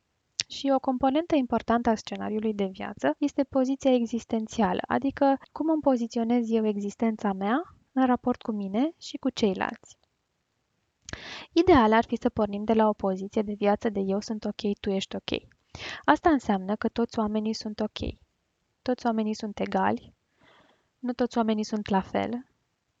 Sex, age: female, 20-39